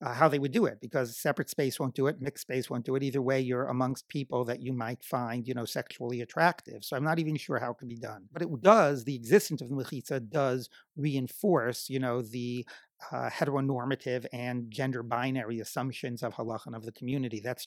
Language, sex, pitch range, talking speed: English, male, 125-145 Hz, 215 wpm